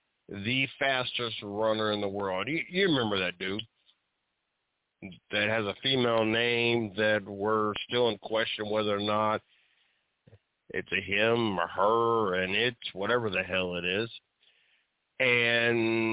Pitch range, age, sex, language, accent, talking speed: 100-115 Hz, 50-69, male, English, American, 140 wpm